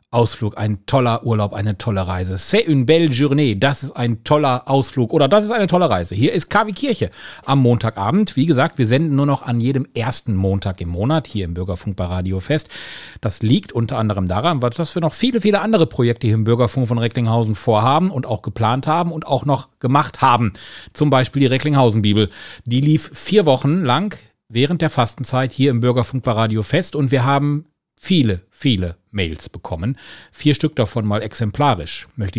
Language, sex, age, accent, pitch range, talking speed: German, male, 40-59, German, 110-150 Hz, 190 wpm